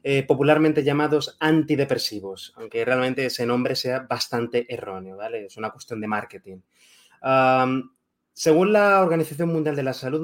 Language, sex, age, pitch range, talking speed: Spanish, male, 20-39, 130-155 Hz, 140 wpm